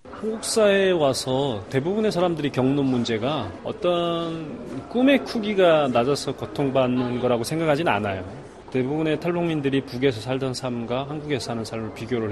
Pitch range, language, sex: 120-155 Hz, Korean, male